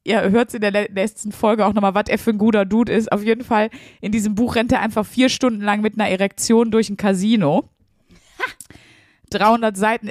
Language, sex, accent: German, female, German